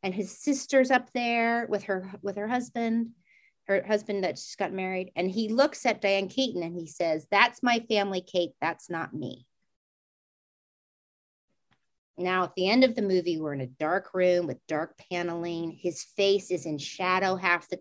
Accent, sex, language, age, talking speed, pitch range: American, female, English, 40-59, 180 wpm, 175-220 Hz